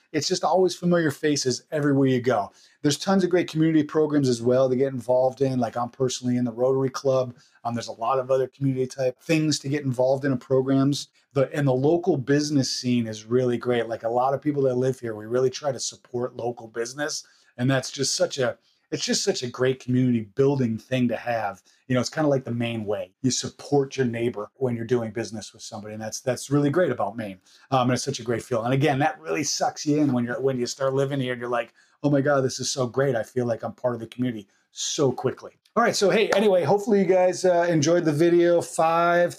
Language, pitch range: English, 125-150 Hz